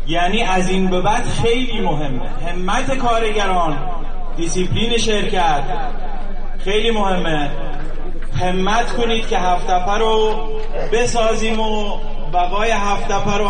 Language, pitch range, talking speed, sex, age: Persian, 185-235 Hz, 105 wpm, male, 30-49